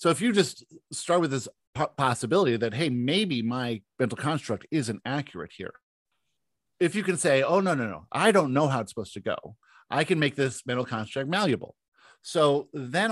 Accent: American